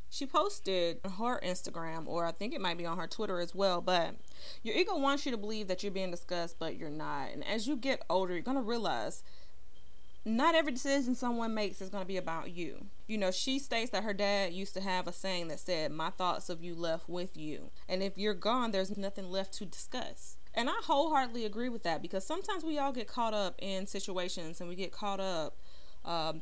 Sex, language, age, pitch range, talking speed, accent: female, English, 30-49, 175-240 Hz, 230 wpm, American